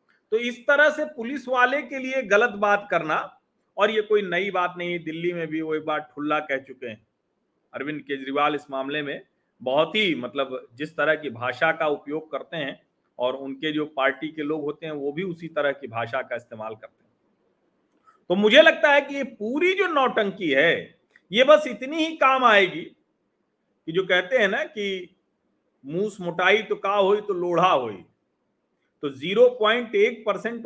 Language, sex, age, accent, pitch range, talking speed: Hindi, male, 40-59, native, 150-230 Hz, 185 wpm